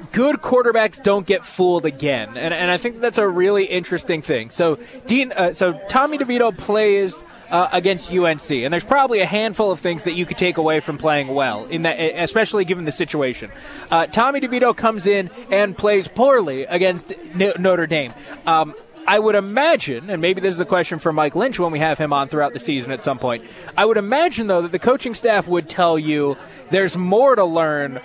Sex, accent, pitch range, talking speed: male, American, 165-220 Hz, 210 wpm